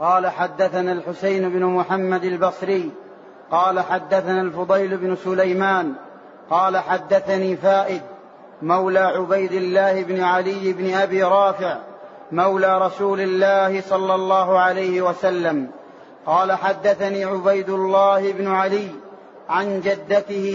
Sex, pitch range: male, 190-205 Hz